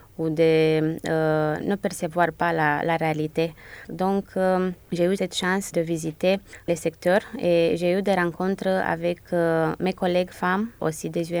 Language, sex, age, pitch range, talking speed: French, female, 20-39, 165-185 Hz, 165 wpm